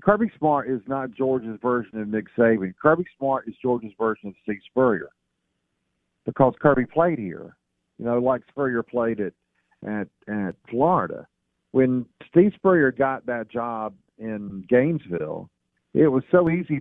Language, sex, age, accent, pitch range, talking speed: English, male, 50-69, American, 115-180 Hz, 150 wpm